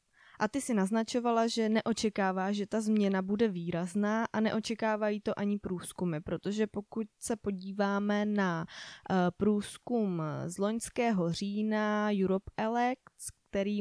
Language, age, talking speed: Czech, 20-39, 120 wpm